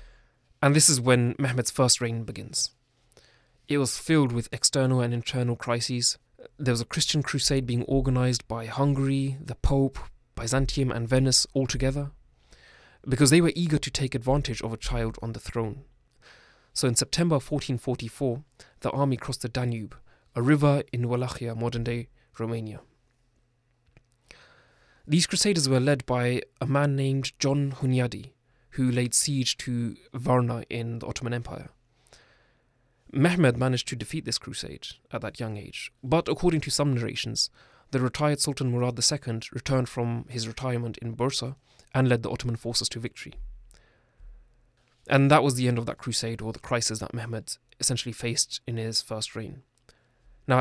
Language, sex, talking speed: English, male, 155 wpm